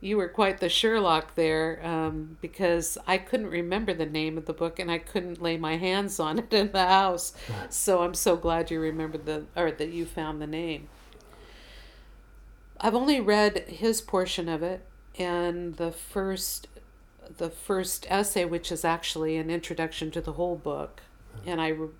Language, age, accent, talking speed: English, 50-69, American, 175 wpm